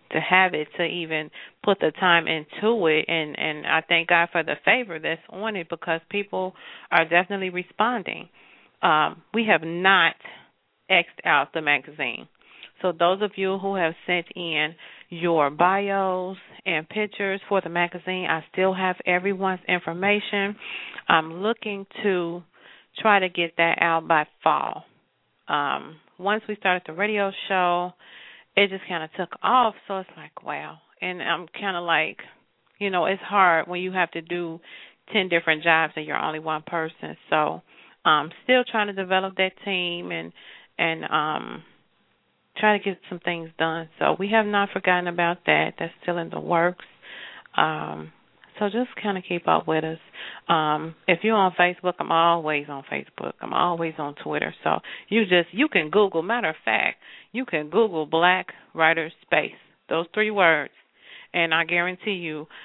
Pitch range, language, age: 165-195 Hz, English, 40-59